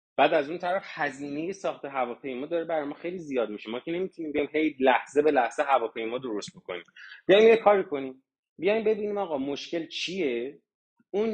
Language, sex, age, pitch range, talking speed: Persian, male, 30-49, 130-195 Hz, 180 wpm